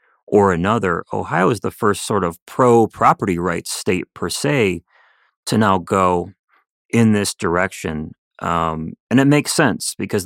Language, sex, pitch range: English, male, 85-110 Hz